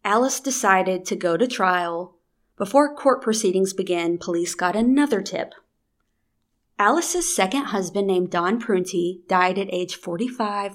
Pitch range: 180-220 Hz